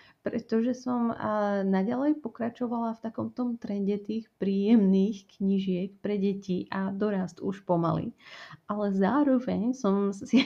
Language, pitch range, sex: Slovak, 185-210 Hz, female